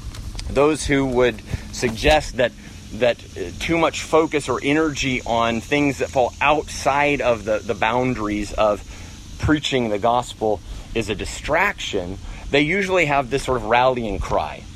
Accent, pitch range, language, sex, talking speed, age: American, 100-140 Hz, English, male, 140 wpm, 30-49